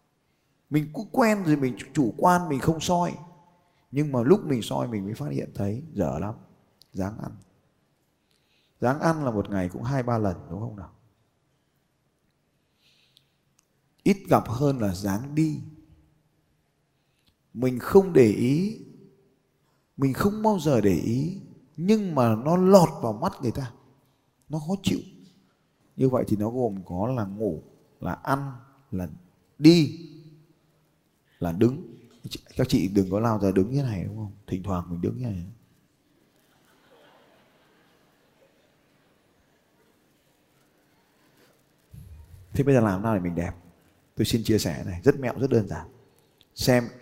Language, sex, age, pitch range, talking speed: Vietnamese, male, 20-39, 100-145 Hz, 145 wpm